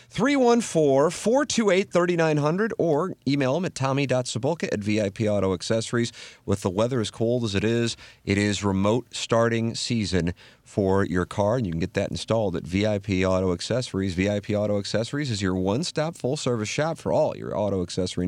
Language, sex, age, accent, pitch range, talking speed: English, male, 40-59, American, 95-130 Hz, 160 wpm